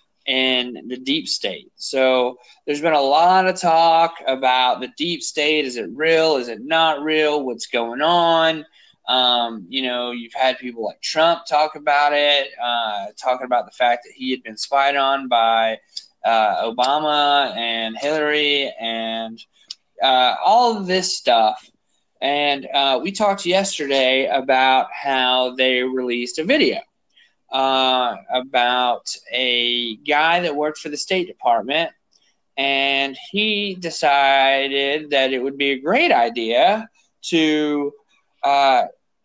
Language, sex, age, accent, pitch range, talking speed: English, male, 20-39, American, 130-170 Hz, 140 wpm